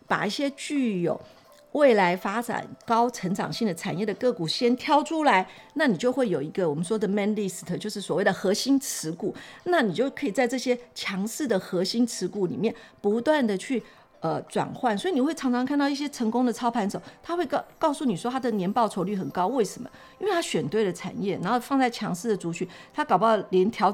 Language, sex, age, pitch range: Chinese, female, 50-69, 185-245 Hz